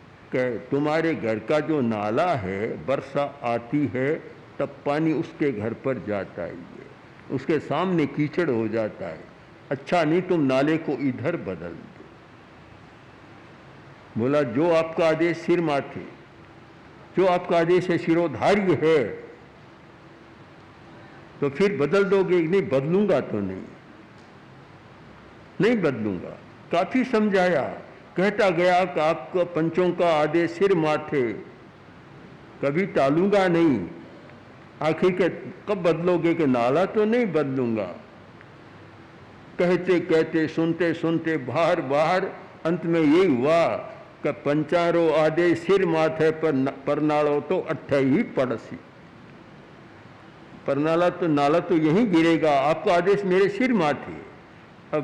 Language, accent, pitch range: Hindi, native, 140-180 Hz